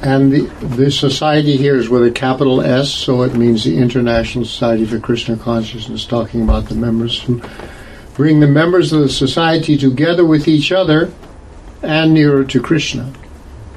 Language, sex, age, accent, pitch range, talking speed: English, male, 60-79, American, 115-145 Hz, 165 wpm